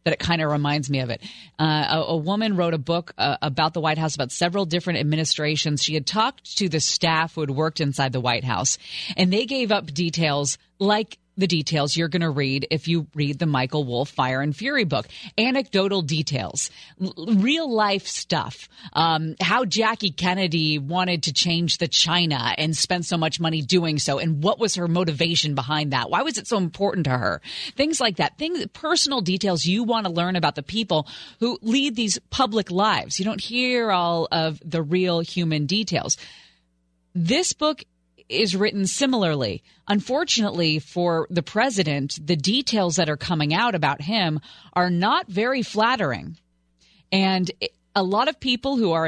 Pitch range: 155-215 Hz